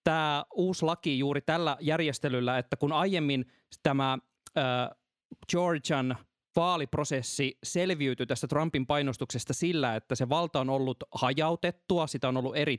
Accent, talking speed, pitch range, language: native, 130 wpm, 125-160 Hz, Finnish